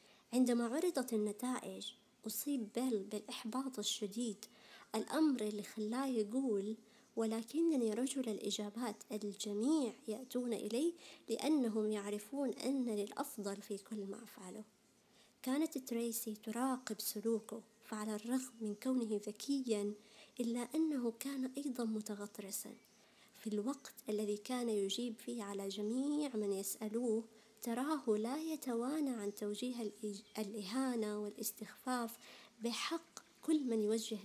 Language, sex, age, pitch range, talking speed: Arabic, male, 20-39, 210-250 Hz, 105 wpm